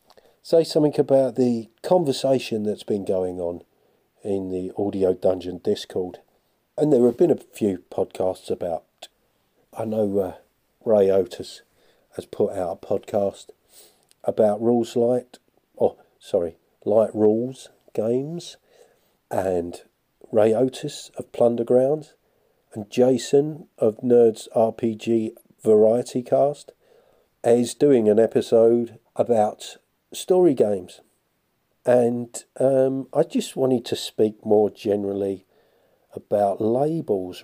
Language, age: English, 40-59